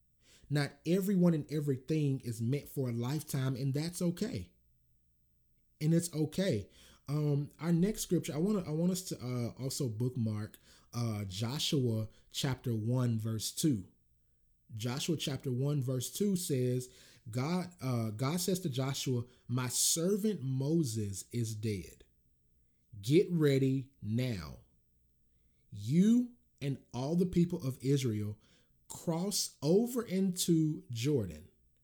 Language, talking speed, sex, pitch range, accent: English, 125 wpm, male, 110-160 Hz, American